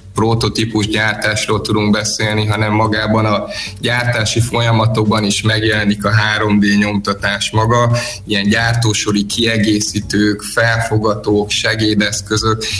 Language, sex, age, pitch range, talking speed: Hungarian, male, 20-39, 100-115 Hz, 95 wpm